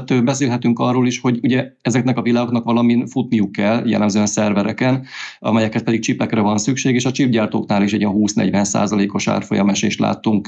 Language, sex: Hungarian, male